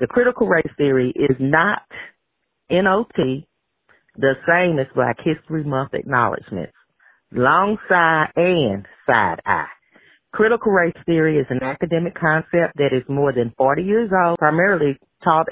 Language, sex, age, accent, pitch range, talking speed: English, female, 40-59, American, 130-165 Hz, 135 wpm